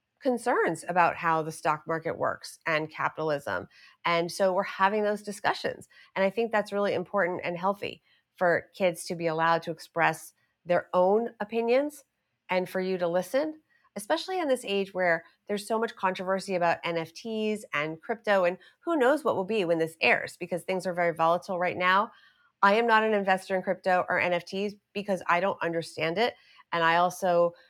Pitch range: 170-205 Hz